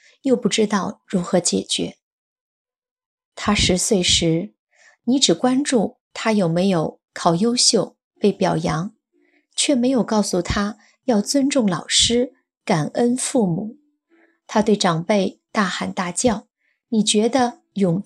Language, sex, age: Chinese, female, 20-39